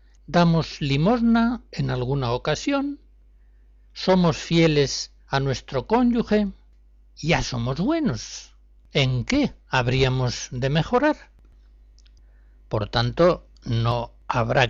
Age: 60-79